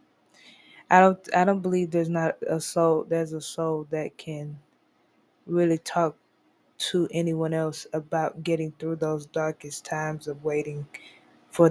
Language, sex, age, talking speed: English, female, 20-39, 145 wpm